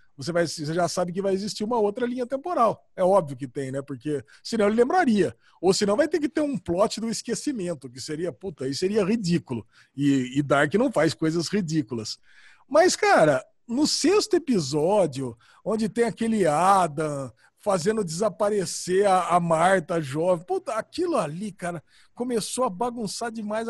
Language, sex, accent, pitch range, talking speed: Portuguese, male, Brazilian, 175-235 Hz, 165 wpm